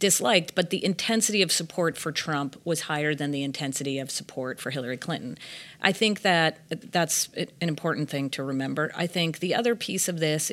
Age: 40-59